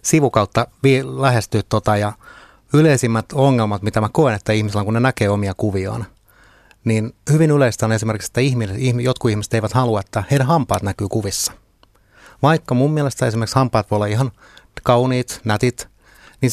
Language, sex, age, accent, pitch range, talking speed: Finnish, male, 30-49, native, 105-130 Hz, 160 wpm